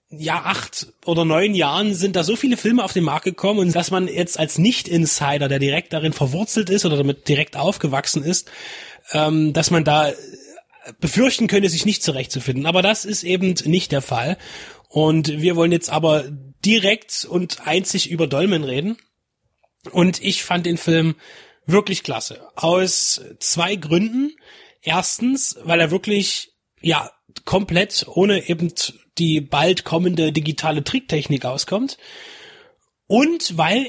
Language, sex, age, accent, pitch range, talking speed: German, male, 30-49, German, 155-200 Hz, 145 wpm